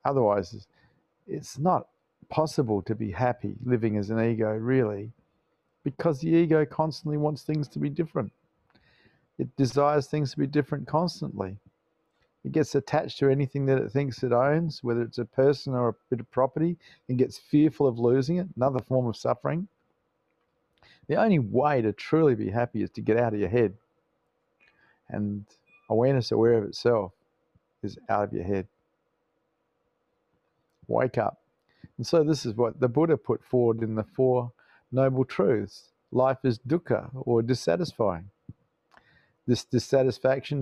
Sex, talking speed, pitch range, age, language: male, 155 wpm, 115-150 Hz, 50-69, English